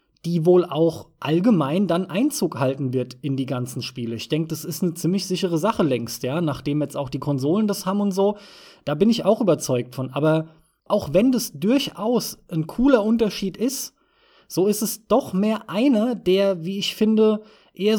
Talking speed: 190 wpm